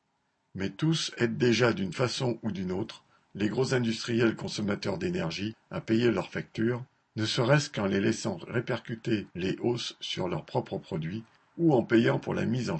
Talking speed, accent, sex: 175 wpm, French, male